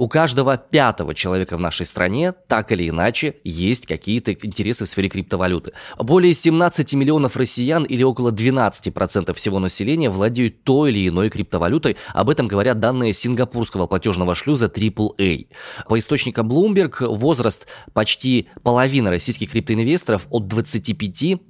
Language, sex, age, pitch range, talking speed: Russian, male, 20-39, 95-125 Hz, 135 wpm